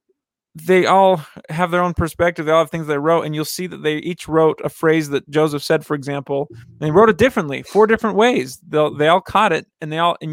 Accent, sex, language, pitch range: American, male, English, 145-175 Hz